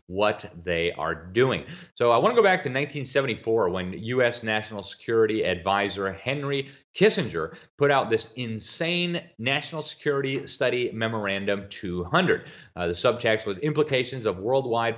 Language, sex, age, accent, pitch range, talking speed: English, male, 30-49, American, 95-130 Hz, 140 wpm